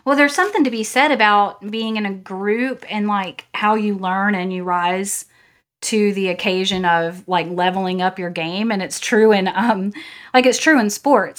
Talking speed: 200 wpm